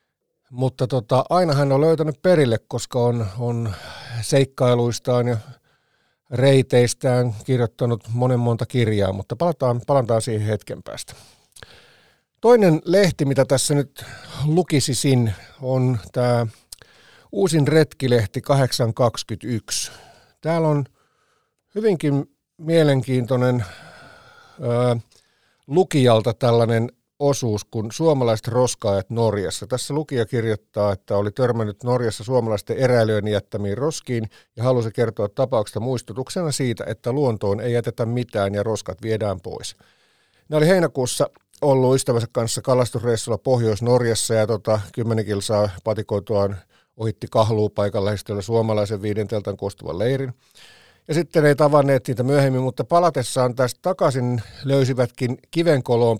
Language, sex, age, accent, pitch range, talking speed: Finnish, male, 50-69, native, 110-135 Hz, 110 wpm